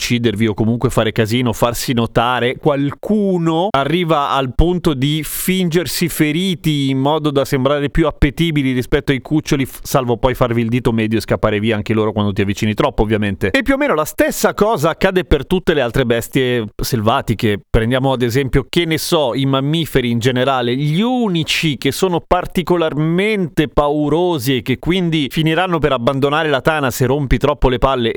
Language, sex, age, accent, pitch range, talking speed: Italian, male, 30-49, native, 120-155 Hz, 175 wpm